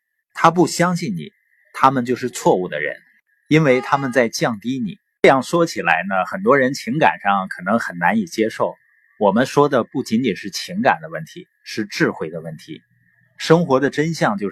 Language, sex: Chinese, male